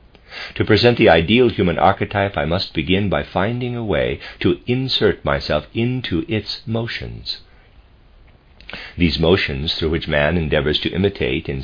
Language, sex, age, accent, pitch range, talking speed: English, male, 60-79, American, 75-105 Hz, 145 wpm